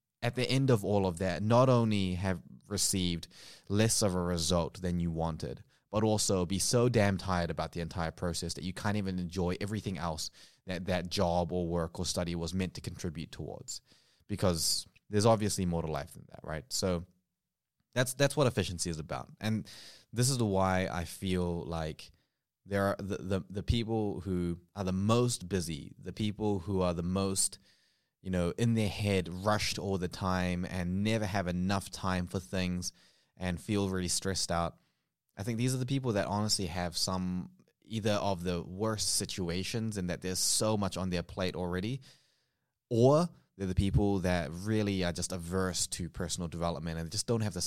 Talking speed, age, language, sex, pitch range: 190 wpm, 20-39, English, male, 90-105 Hz